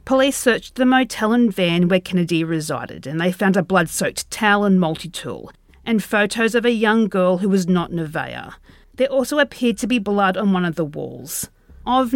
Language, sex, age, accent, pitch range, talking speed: English, female, 40-59, Australian, 175-230 Hz, 195 wpm